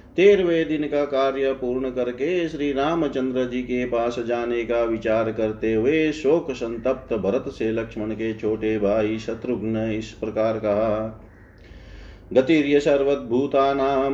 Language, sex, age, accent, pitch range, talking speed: Hindi, male, 40-59, native, 125-150 Hz, 125 wpm